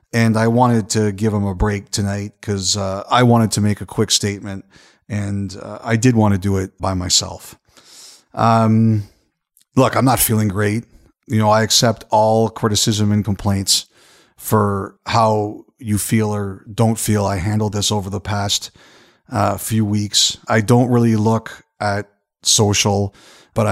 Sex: male